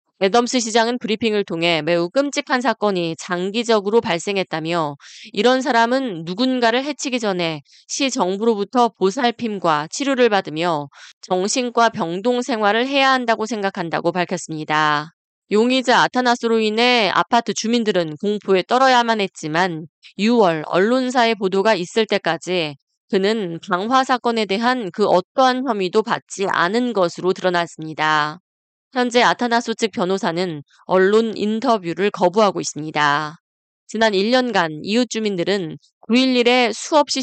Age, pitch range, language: 20-39, 180-235 Hz, Korean